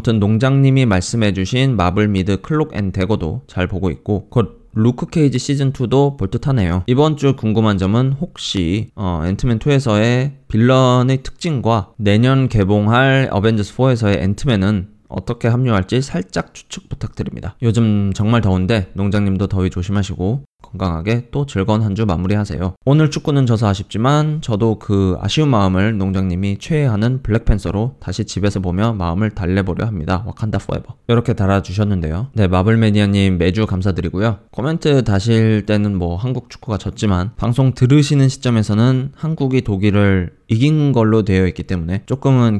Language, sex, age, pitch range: Korean, male, 20-39, 95-125 Hz